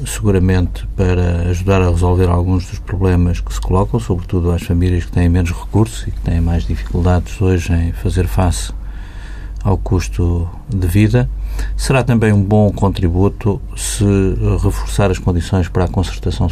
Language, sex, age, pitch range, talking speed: Portuguese, male, 50-69, 90-100 Hz, 155 wpm